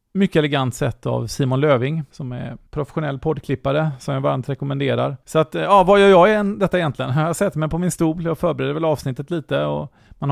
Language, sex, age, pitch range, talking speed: Swedish, male, 30-49, 125-160 Hz, 215 wpm